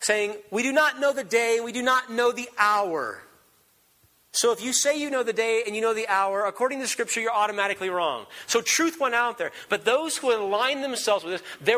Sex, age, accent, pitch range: male, 40-59, American, 145-245 Hz